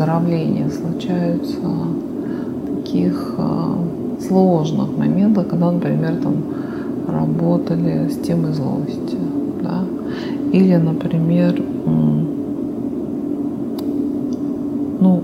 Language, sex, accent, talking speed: Russian, female, native, 65 wpm